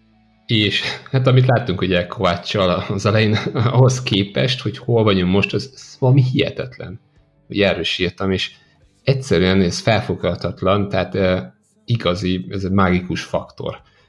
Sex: male